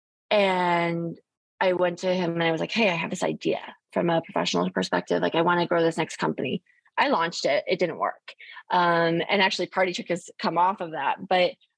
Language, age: English, 20-39